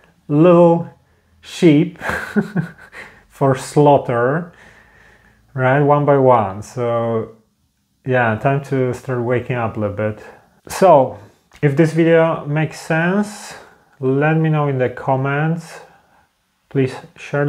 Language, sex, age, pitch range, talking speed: English, male, 30-49, 120-140 Hz, 110 wpm